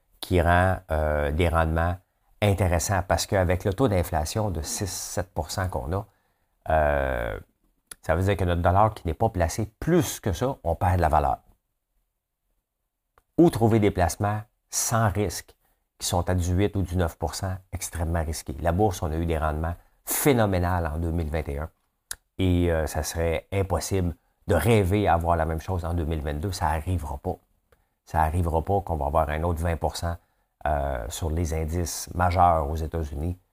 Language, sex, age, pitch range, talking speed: French, male, 50-69, 80-100 Hz, 165 wpm